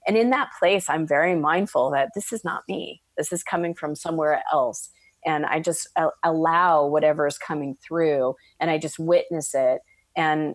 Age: 30-49